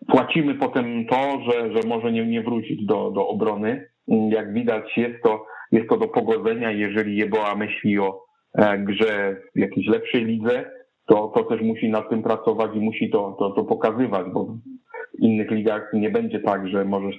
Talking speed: 180 wpm